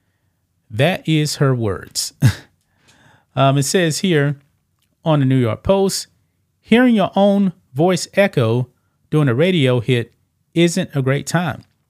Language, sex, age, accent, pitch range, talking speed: English, male, 30-49, American, 115-155 Hz, 130 wpm